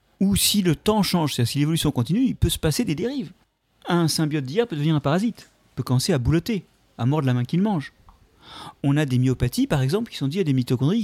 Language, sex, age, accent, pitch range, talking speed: French, male, 40-59, French, 120-165 Hz, 240 wpm